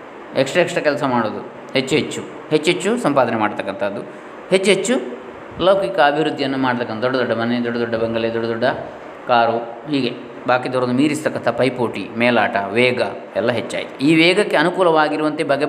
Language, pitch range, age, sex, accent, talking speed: Kannada, 120-150 Hz, 20-39, male, native, 120 wpm